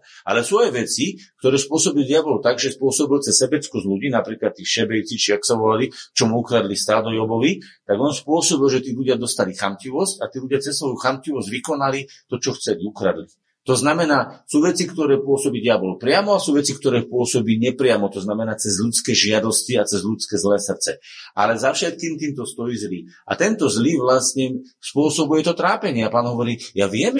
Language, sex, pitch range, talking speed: Slovak, male, 115-165 Hz, 190 wpm